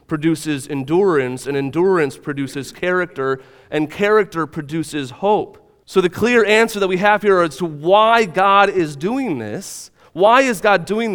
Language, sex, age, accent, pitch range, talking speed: English, male, 30-49, American, 115-180 Hz, 155 wpm